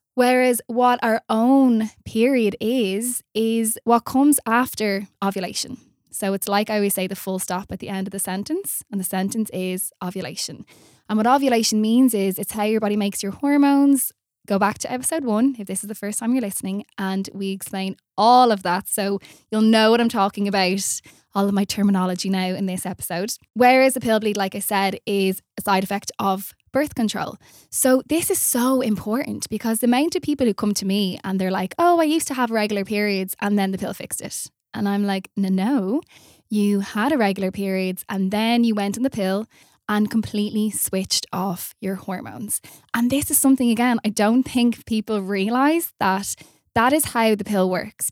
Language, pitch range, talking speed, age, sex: English, 195-240 Hz, 200 wpm, 10-29, female